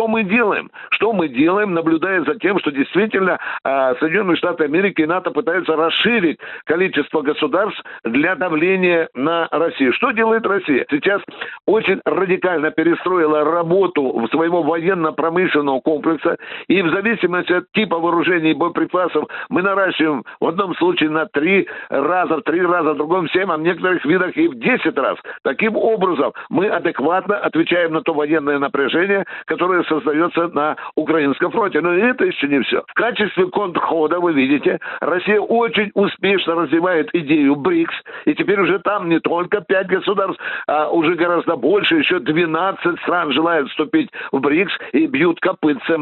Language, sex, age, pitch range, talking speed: Russian, male, 60-79, 160-205 Hz, 155 wpm